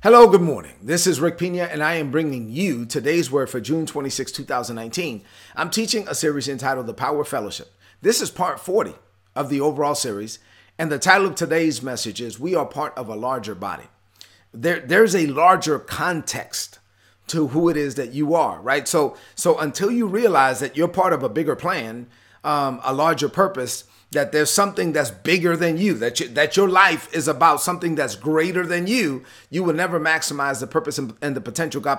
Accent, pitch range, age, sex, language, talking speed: American, 125-165 Hz, 40-59, male, English, 200 wpm